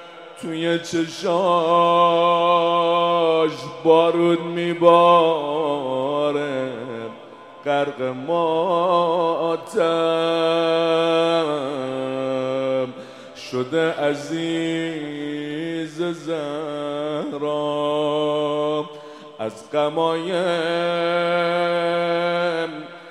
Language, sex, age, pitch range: Persian, male, 30-49, 150-175 Hz